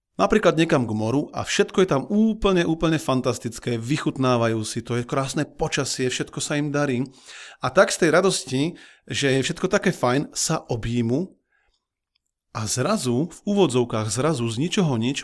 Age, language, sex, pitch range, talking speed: 40-59, Slovak, male, 120-155 Hz, 160 wpm